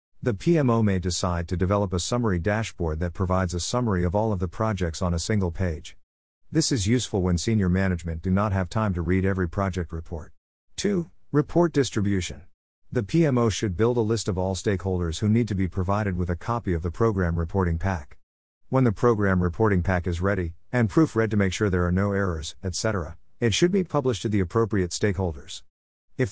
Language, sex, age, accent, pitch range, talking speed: English, male, 50-69, American, 90-110 Hz, 205 wpm